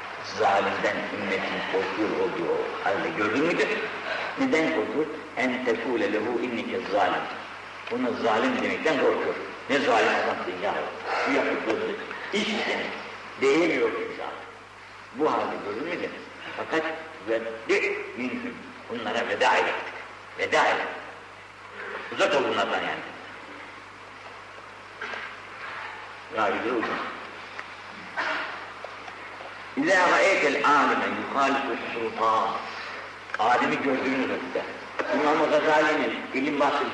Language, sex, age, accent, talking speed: Turkish, male, 60-79, native, 80 wpm